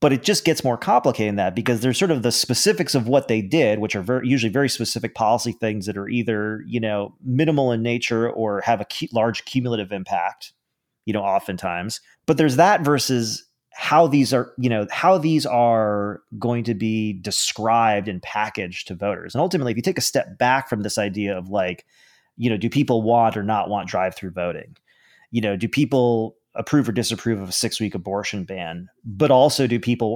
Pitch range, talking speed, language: 105-135 Hz, 205 wpm, English